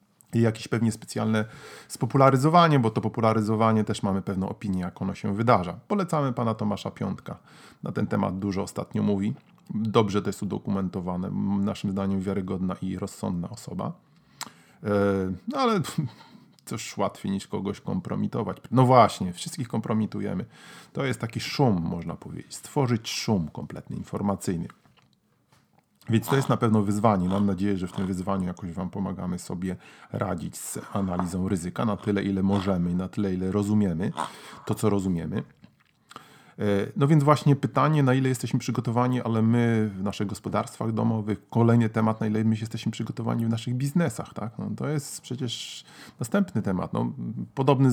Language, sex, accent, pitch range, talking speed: Polish, male, native, 100-120 Hz, 150 wpm